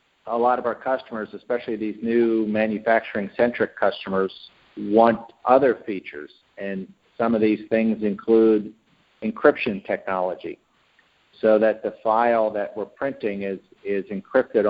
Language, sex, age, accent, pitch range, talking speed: English, male, 50-69, American, 100-110 Hz, 125 wpm